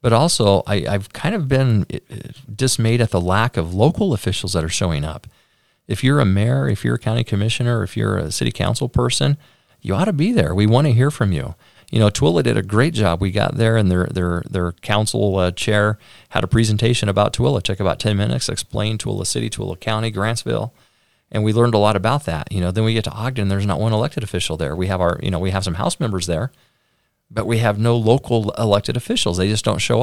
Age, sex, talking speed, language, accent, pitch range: 40-59, male, 240 wpm, English, American, 100-125 Hz